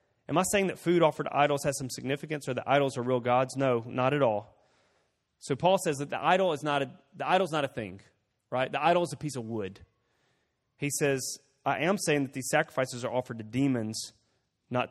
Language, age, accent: English, 30-49, American